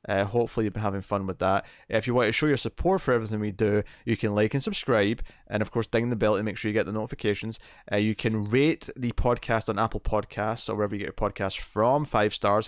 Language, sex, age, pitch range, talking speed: English, male, 20-39, 105-125 Hz, 260 wpm